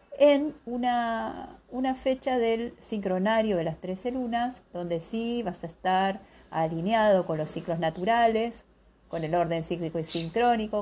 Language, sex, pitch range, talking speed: Spanish, female, 170-215 Hz, 145 wpm